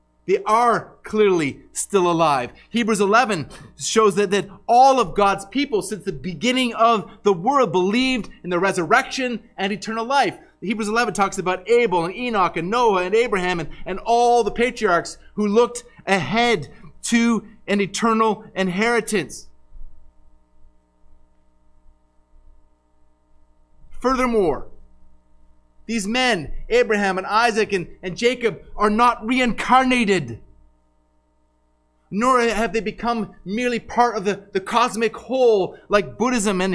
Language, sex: English, male